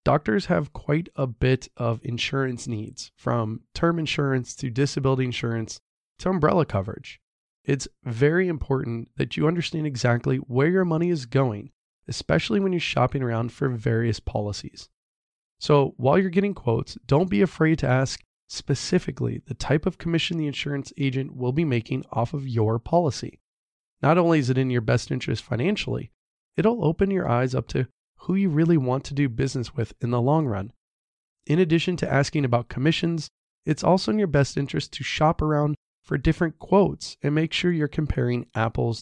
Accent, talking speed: American, 175 wpm